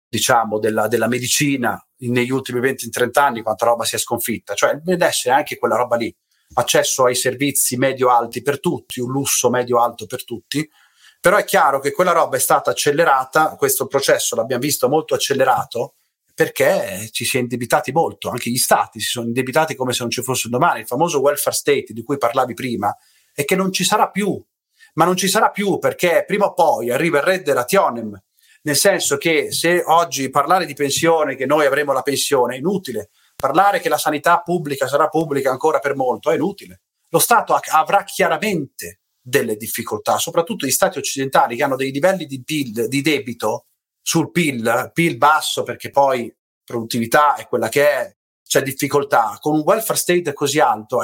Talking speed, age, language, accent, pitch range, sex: 185 wpm, 40-59, Italian, native, 125-175 Hz, male